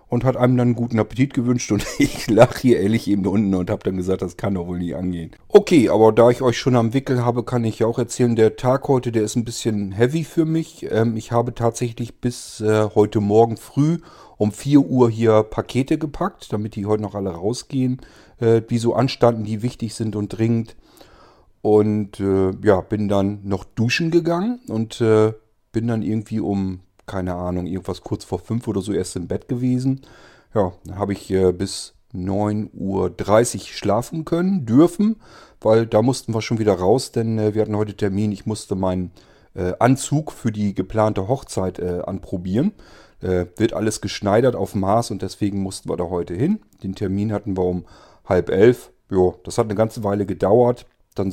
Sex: male